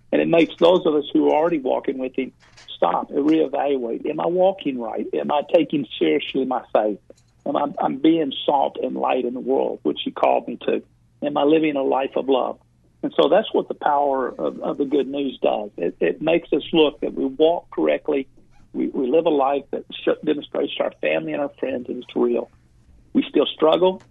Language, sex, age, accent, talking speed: English, male, 50-69, American, 220 wpm